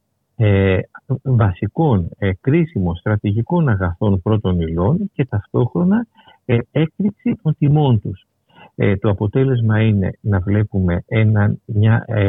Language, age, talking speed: Greek, 50-69, 90 wpm